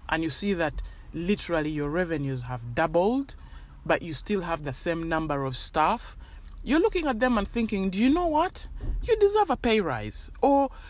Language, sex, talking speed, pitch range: English, male, 185 wpm, 145-205 Hz